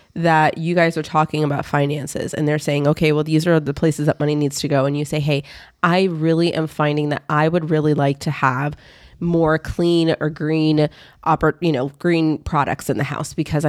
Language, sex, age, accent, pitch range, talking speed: English, female, 20-39, American, 150-175 Hz, 215 wpm